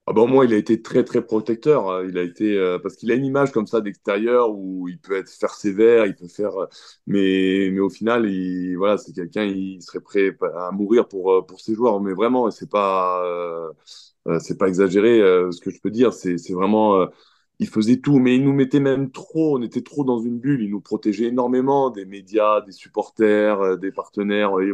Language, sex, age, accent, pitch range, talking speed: French, male, 20-39, French, 95-115 Hz, 225 wpm